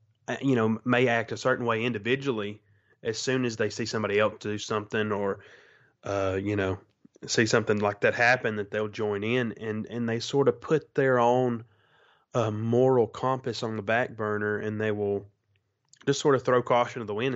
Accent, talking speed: American, 195 wpm